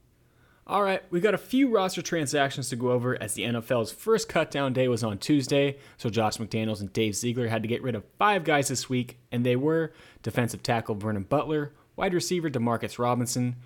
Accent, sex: American, male